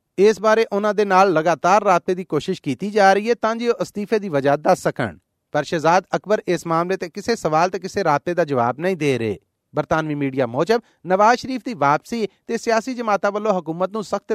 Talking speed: 190 wpm